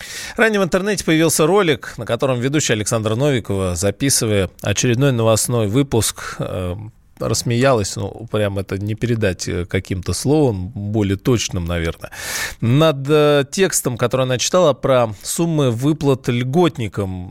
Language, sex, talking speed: Russian, male, 120 wpm